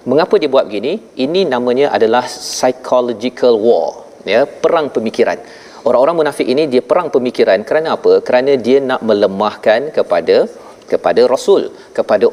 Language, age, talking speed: Malayalam, 40-59, 135 wpm